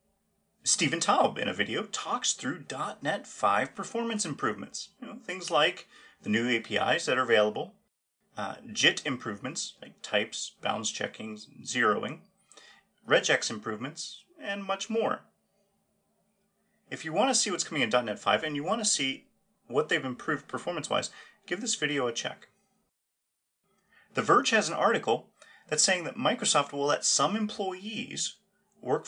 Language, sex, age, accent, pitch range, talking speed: English, male, 30-49, American, 145-215 Hz, 145 wpm